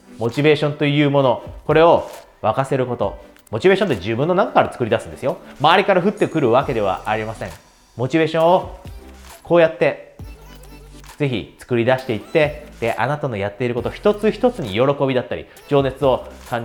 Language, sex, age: Japanese, male, 30-49